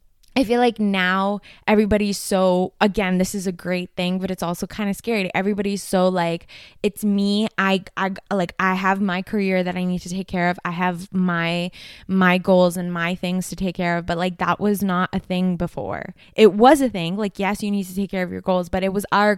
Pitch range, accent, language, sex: 180-205 Hz, American, English, female